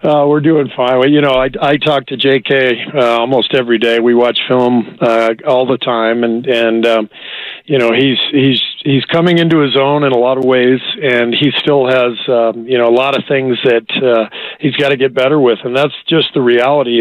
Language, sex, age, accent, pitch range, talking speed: English, male, 50-69, American, 120-140 Hz, 225 wpm